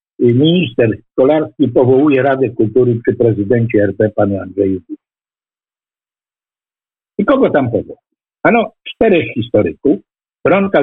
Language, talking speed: Polish, 105 wpm